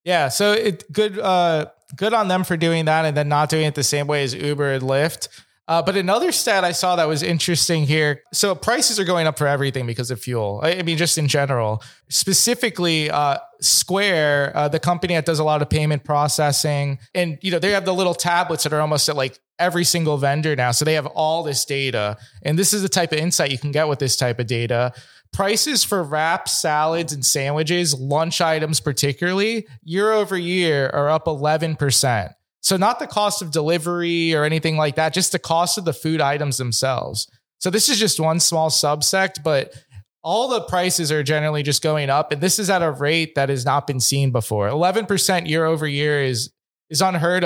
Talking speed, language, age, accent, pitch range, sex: 210 wpm, English, 20-39, American, 140-175 Hz, male